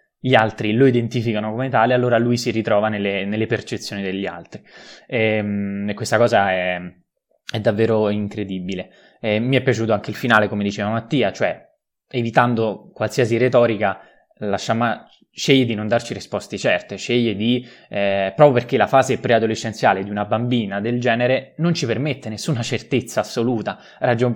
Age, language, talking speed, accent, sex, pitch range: 20-39, Italian, 160 wpm, native, male, 105-125 Hz